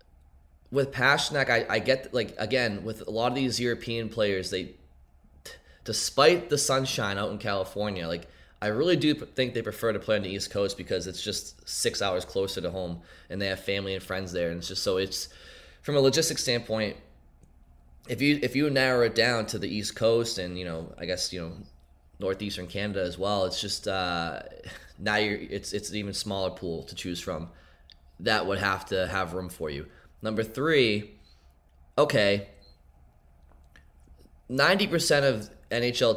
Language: English